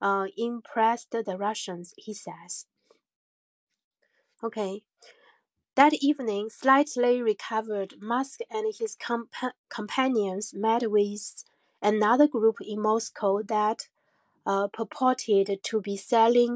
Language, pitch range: Chinese, 210-245 Hz